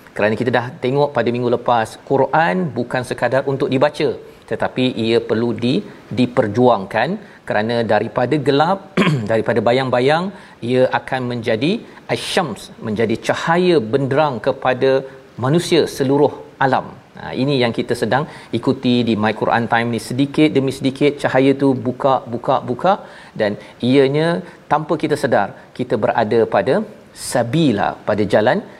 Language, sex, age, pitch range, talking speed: Malayalam, male, 40-59, 120-145 Hz, 130 wpm